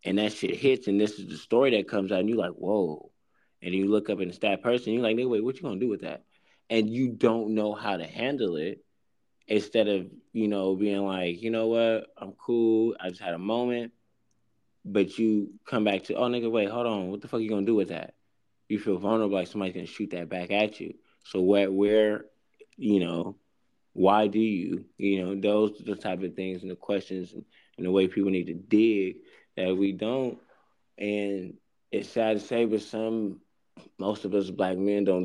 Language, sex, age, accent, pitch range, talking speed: English, male, 20-39, American, 95-110 Hz, 230 wpm